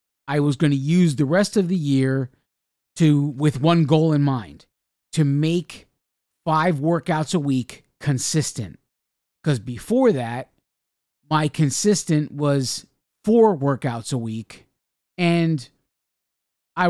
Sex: male